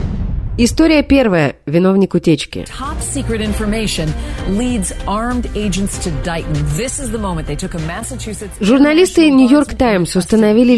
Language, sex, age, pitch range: Russian, female, 30-49, 175-245 Hz